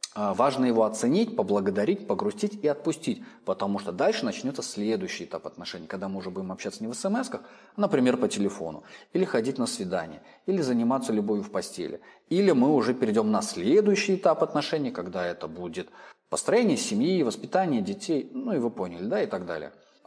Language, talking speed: Russian, 175 wpm